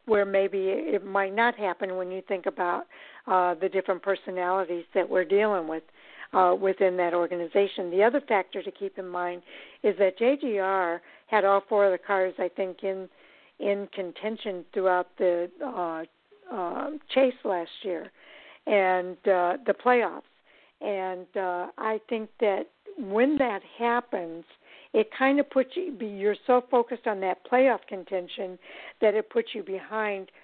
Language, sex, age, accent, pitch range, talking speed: English, female, 60-79, American, 185-225 Hz, 160 wpm